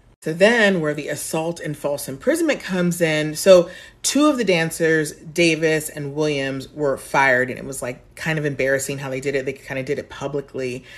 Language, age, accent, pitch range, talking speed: English, 30-49, American, 140-165 Hz, 200 wpm